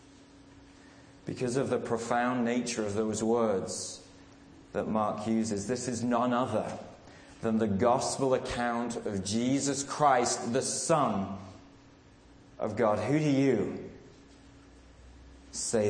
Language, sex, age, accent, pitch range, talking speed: English, male, 30-49, British, 105-140 Hz, 115 wpm